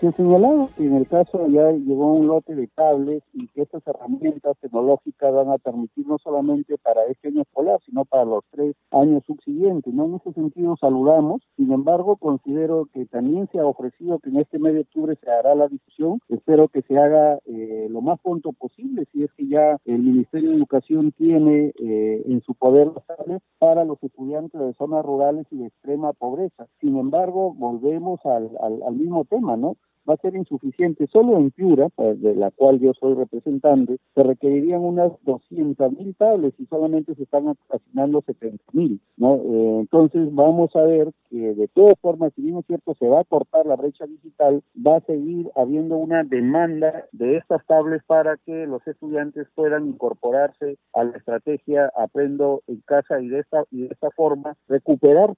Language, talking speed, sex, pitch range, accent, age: Spanish, 185 wpm, male, 135-160 Hz, Mexican, 50-69